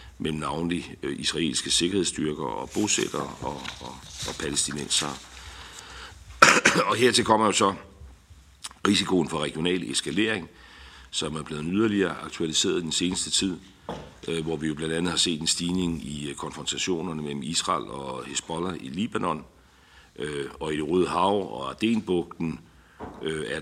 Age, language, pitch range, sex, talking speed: 60-79, Danish, 75-90 Hz, male, 135 wpm